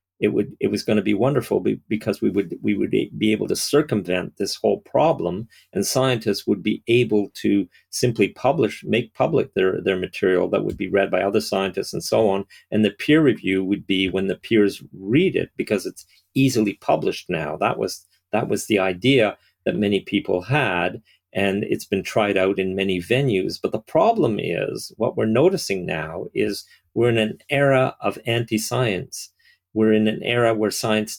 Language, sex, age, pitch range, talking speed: English, male, 50-69, 100-120 Hz, 190 wpm